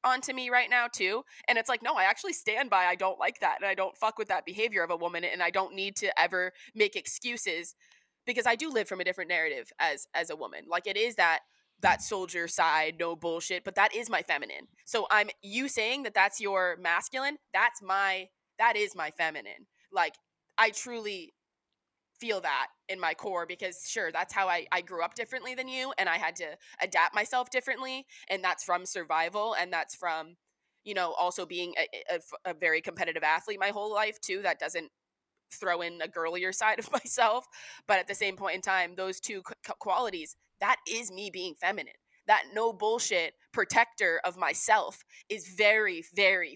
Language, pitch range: English, 180-235 Hz